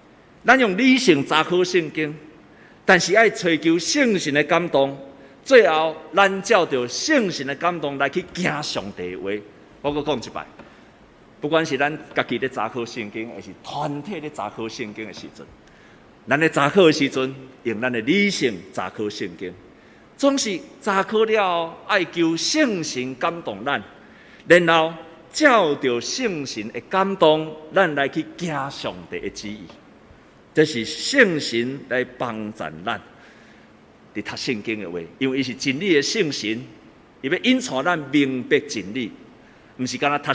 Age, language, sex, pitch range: 50-69, Chinese, male, 125-195 Hz